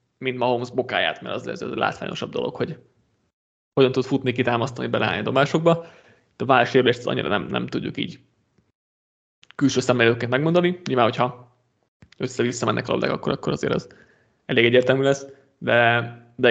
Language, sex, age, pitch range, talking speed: Hungarian, male, 20-39, 115-135 Hz, 155 wpm